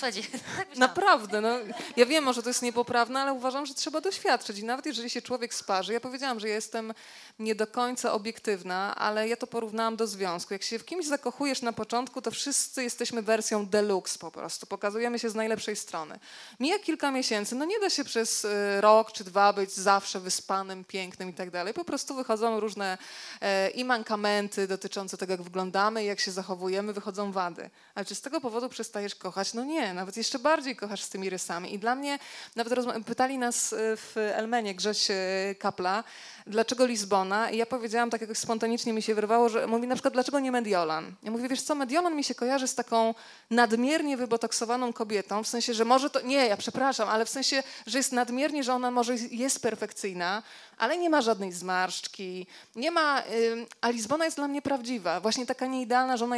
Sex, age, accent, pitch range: female, 20-39, native, 205-255 Hz